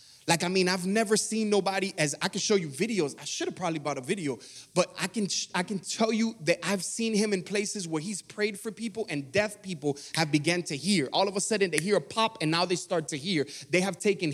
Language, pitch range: English, 150-205 Hz